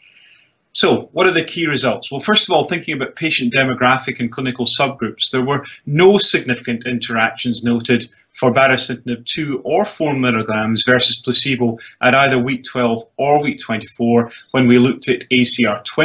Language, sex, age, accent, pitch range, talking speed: English, male, 30-49, British, 120-140 Hz, 160 wpm